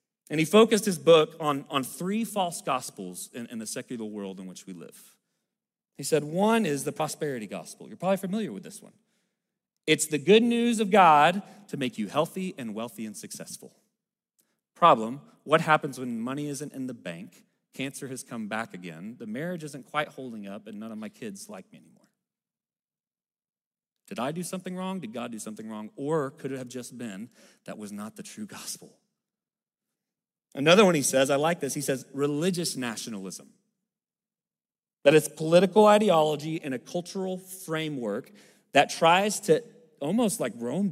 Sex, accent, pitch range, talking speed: male, American, 140-205 Hz, 175 wpm